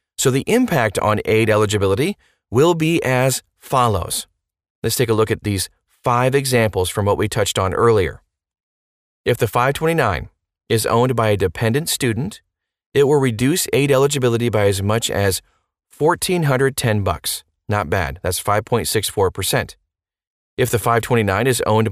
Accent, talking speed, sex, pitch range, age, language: American, 140 wpm, male, 95-130 Hz, 30-49, English